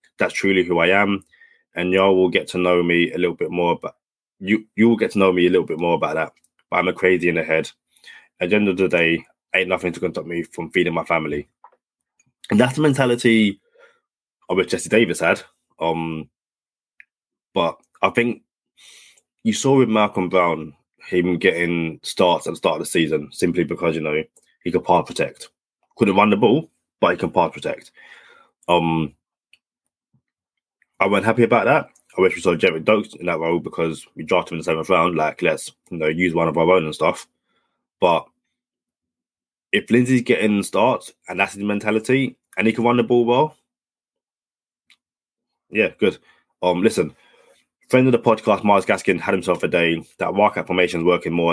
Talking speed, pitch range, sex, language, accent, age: 195 wpm, 85-110 Hz, male, English, British, 20-39